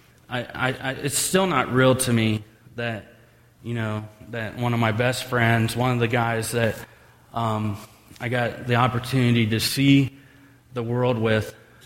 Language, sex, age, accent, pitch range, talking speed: English, male, 30-49, American, 115-135 Hz, 160 wpm